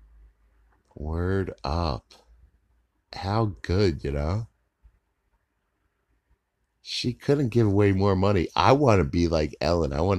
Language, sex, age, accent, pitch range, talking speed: English, male, 50-69, American, 70-90 Hz, 120 wpm